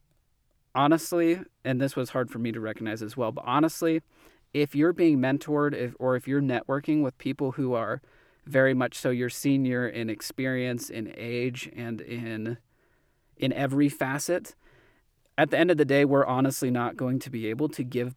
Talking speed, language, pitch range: 180 wpm, English, 115-135 Hz